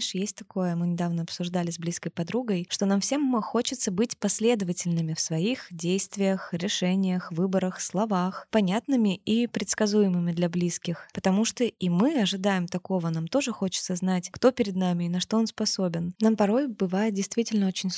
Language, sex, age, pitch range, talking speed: Russian, female, 20-39, 180-215 Hz, 160 wpm